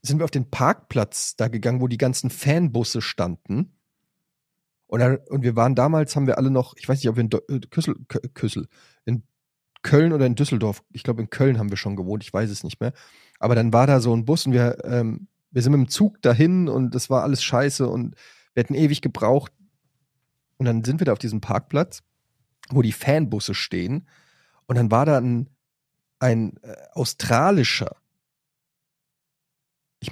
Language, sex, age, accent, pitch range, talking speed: German, male, 30-49, German, 115-145 Hz, 185 wpm